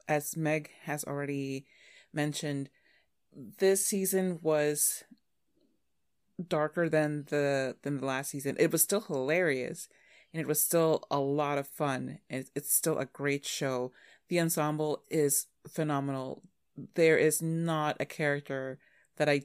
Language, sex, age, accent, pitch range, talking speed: English, female, 30-49, American, 145-185 Hz, 135 wpm